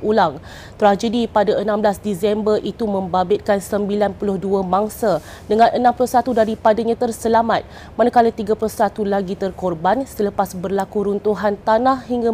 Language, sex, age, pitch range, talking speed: Malay, female, 30-49, 205-240 Hz, 105 wpm